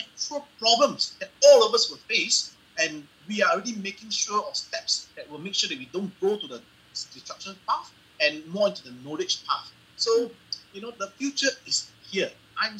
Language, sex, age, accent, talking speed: English, male, 30-49, Malaysian, 190 wpm